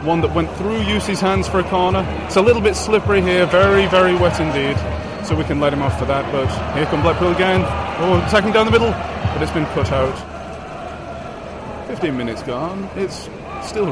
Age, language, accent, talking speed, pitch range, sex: 30-49, English, British, 205 wpm, 140-190 Hz, male